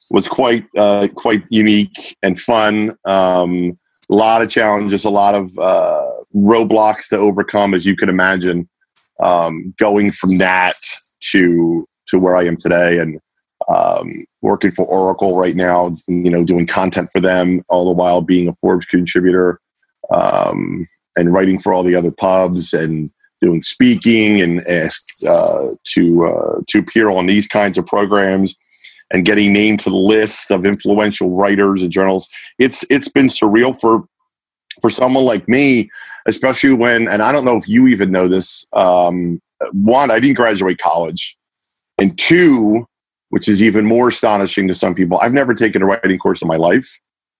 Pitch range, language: 90-110 Hz, English